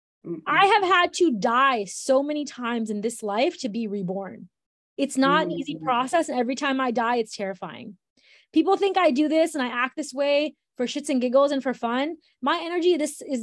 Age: 20-39